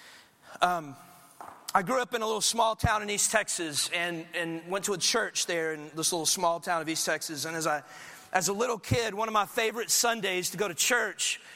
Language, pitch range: English, 175-215 Hz